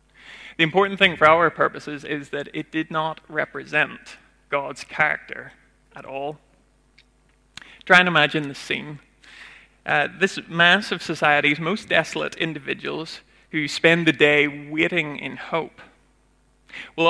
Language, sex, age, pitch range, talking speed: English, male, 30-49, 145-170 Hz, 130 wpm